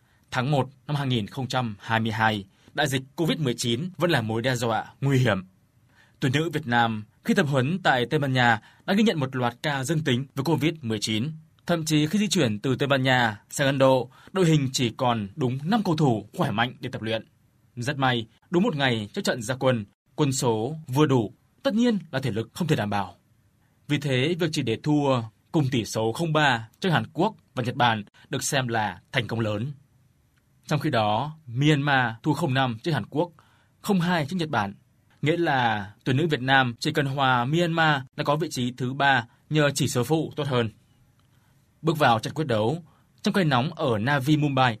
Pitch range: 120-155 Hz